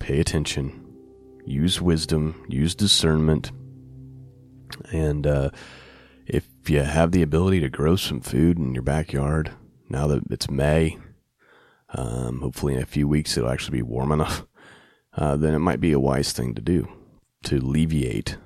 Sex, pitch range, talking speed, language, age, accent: male, 70-90 Hz, 155 wpm, English, 30-49, American